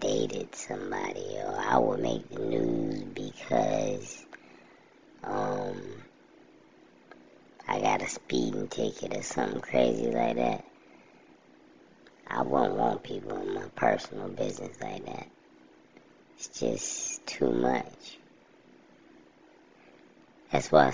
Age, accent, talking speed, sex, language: 20-39, American, 105 wpm, male, English